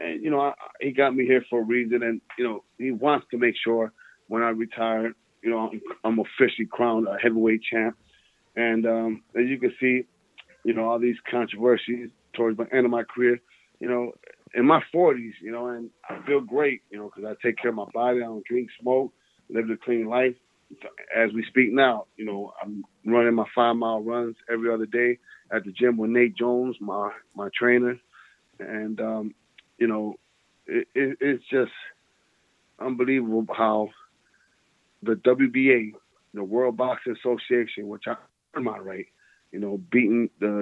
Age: 30-49